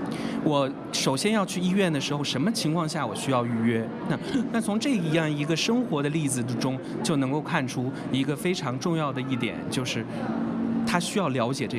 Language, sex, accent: Chinese, male, native